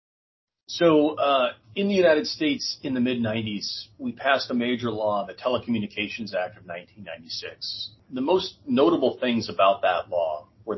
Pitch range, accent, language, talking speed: 105-135 Hz, American, English, 150 wpm